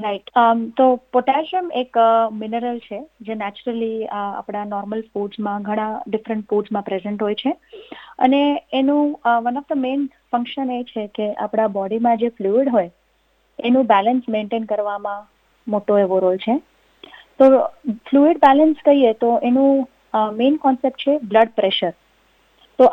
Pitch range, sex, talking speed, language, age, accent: 220-280 Hz, female, 135 wpm, Gujarati, 30-49, native